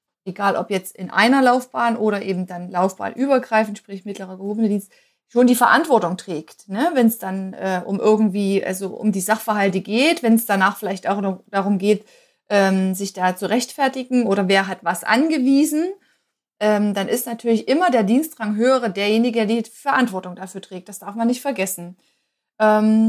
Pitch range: 205-250 Hz